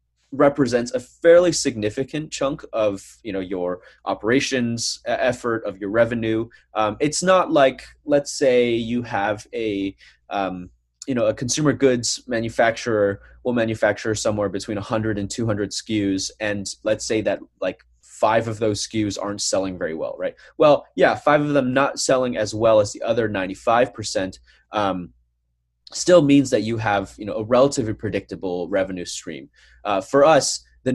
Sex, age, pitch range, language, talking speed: male, 20-39, 95-125 Hz, English, 160 wpm